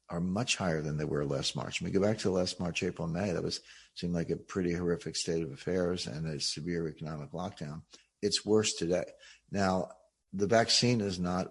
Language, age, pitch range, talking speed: English, 60-79, 85-100 Hz, 215 wpm